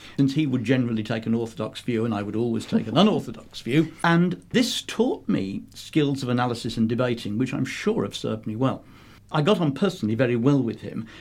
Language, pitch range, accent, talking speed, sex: English, 110-140 Hz, British, 215 wpm, male